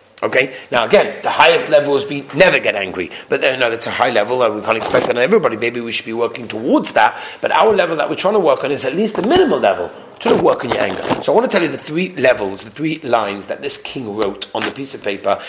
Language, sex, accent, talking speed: English, male, British, 285 wpm